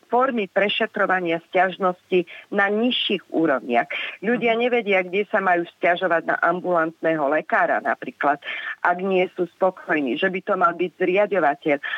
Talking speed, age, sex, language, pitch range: 130 wpm, 40-59, female, Slovak, 160-200 Hz